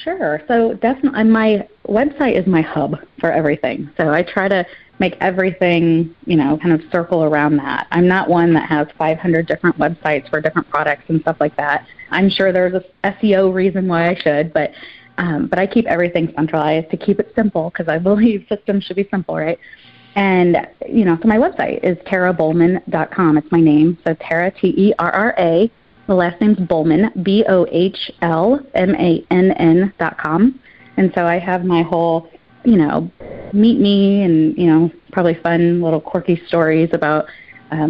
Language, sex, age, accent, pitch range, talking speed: English, female, 30-49, American, 160-190 Hz, 165 wpm